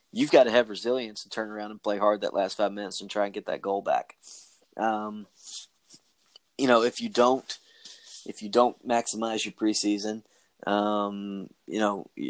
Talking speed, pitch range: 175 wpm, 100-115 Hz